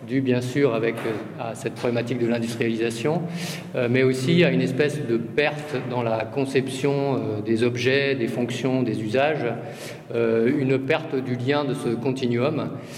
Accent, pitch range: French, 120-145 Hz